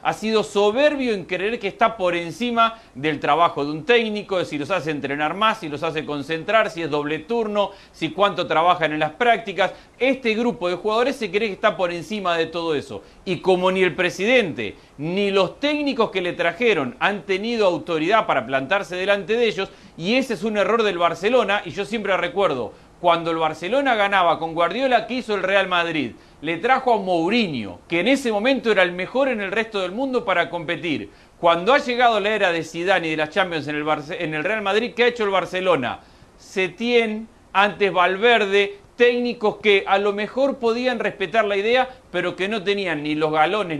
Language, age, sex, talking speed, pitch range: Spanish, 40-59, male, 200 wpm, 170-225 Hz